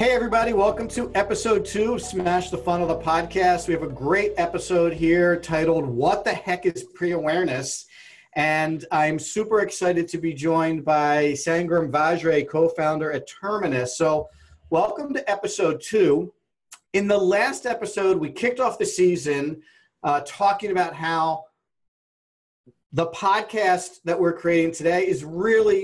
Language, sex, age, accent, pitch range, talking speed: English, male, 40-59, American, 145-180 Hz, 145 wpm